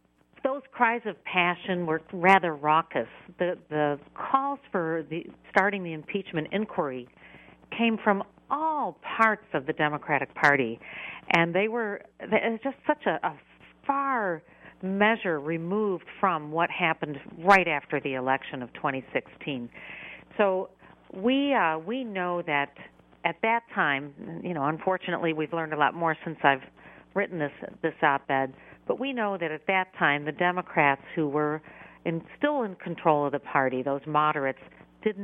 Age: 50-69